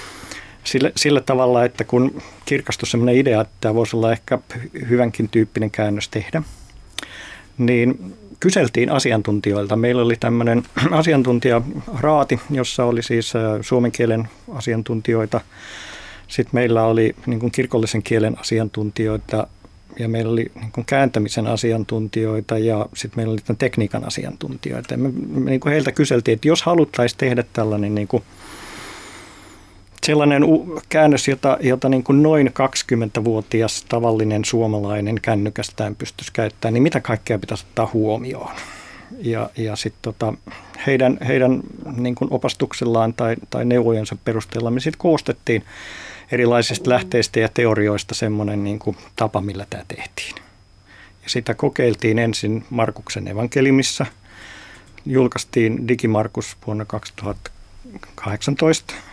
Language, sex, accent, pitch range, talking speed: Finnish, male, native, 110-125 Hz, 115 wpm